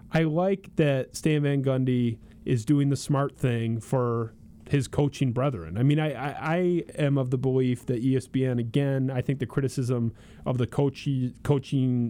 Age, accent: 30-49, American